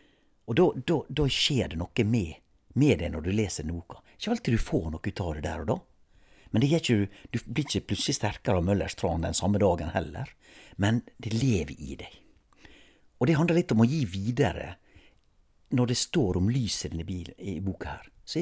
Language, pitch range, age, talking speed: English, 85-120 Hz, 60-79, 195 wpm